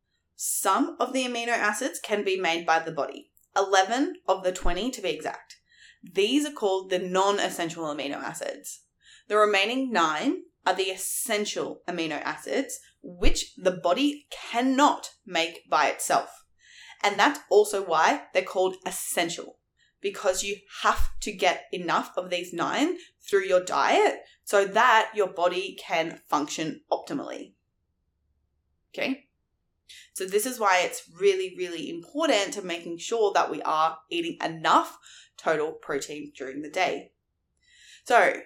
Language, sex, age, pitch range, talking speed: English, female, 20-39, 175-280 Hz, 140 wpm